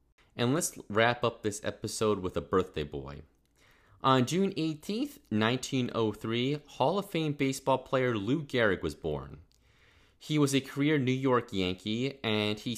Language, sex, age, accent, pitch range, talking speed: English, male, 30-49, American, 95-130 Hz, 150 wpm